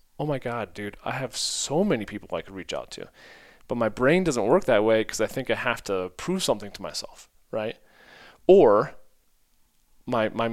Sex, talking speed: male, 200 wpm